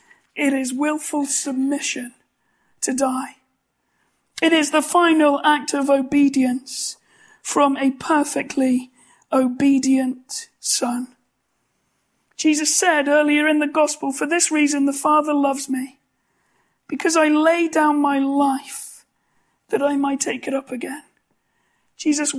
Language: English